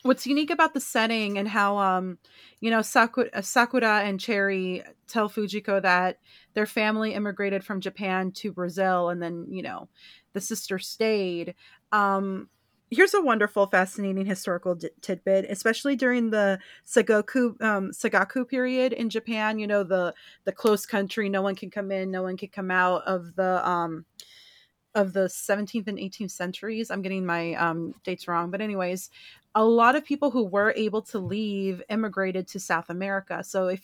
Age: 30-49